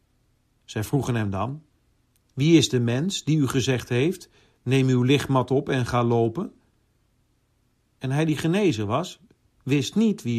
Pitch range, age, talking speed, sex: 115-150 Hz, 50-69, 155 wpm, male